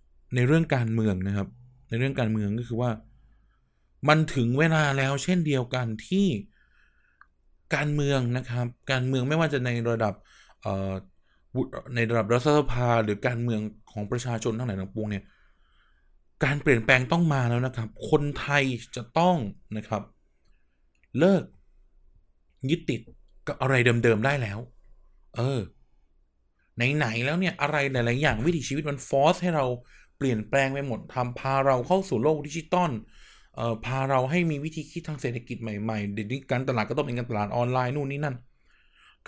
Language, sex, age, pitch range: Thai, male, 20-39, 110-145 Hz